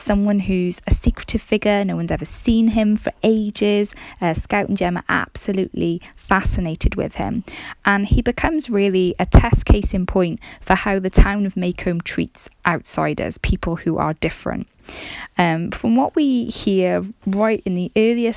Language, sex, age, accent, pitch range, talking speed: English, female, 20-39, British, 165-200 Hz, 165 wpm